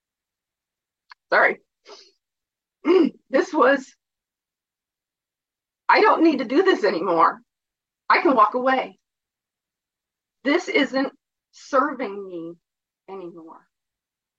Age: 40-59